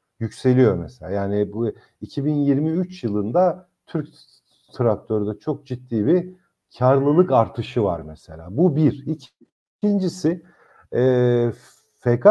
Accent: native